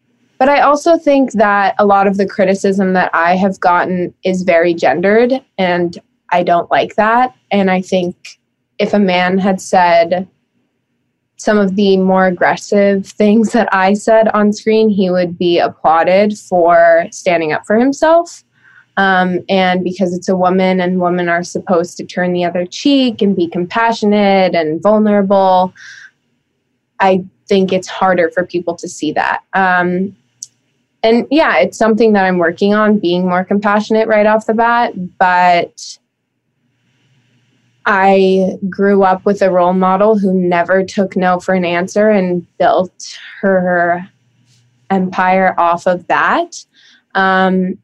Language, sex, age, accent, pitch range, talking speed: English, female, 20-39, American, 175-205 Hz, 145 wpm